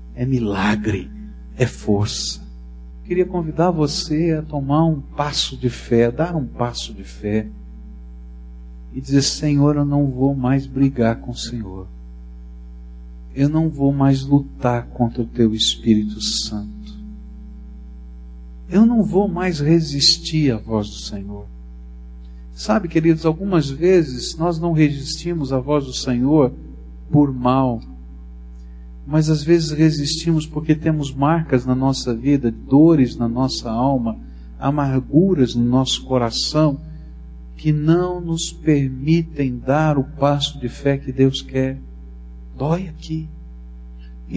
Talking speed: 130 wpm